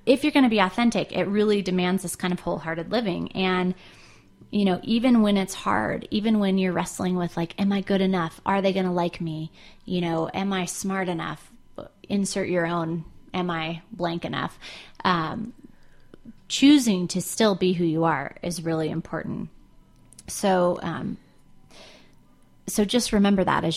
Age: 30-49